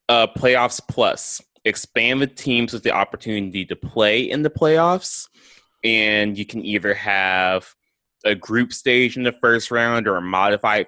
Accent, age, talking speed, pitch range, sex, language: American, 20-39, 160 wpm, 90-110 Hz, male, English